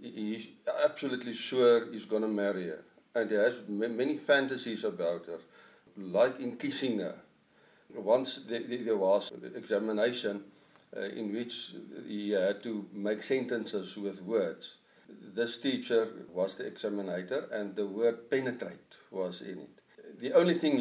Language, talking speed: English, 140 wpm